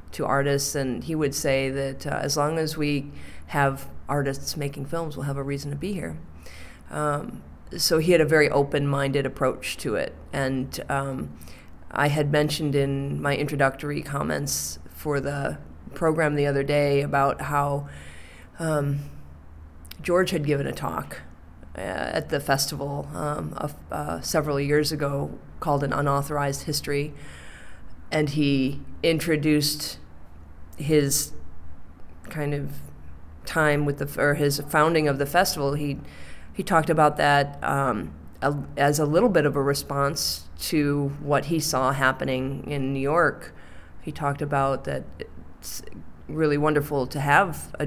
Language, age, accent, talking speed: English, 30-49, American, 145 wpm